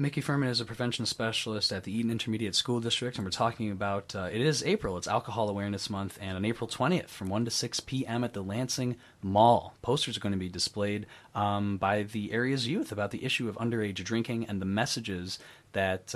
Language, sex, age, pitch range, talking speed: English, male, 30-49, 100-125 Hz, 215 wpm